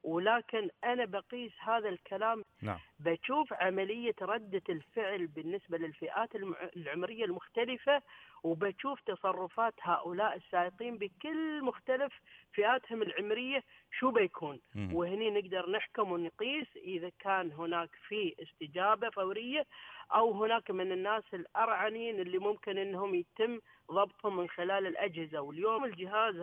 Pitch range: 175-225 Hz